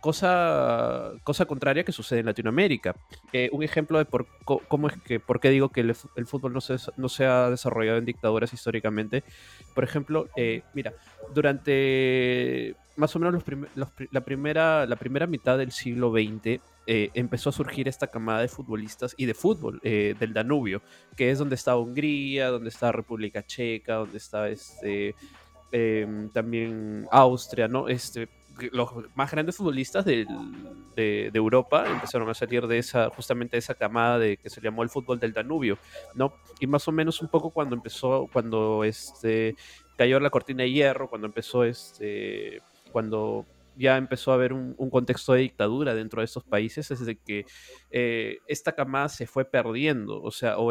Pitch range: 115-145 Hz